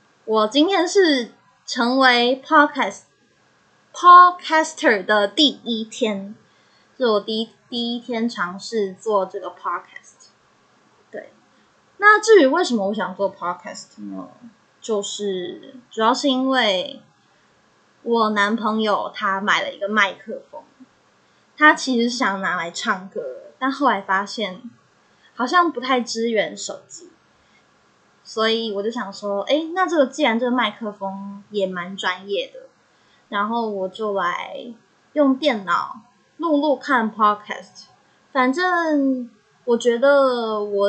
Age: 20-39